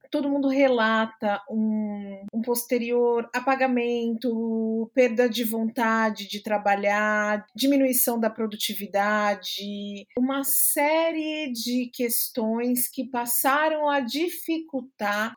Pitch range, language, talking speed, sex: 220-280 Hz, Portuguese, 90 wpm, female